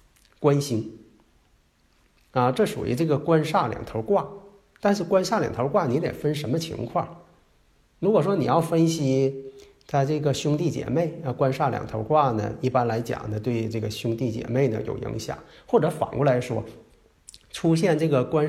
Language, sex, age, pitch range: Chinese, male, 50-69, 115-155 Hz